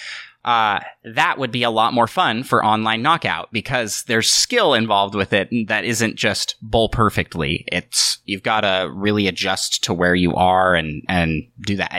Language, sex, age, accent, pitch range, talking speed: English, male, 30-49, American, 95-120 Hz, 180 wpm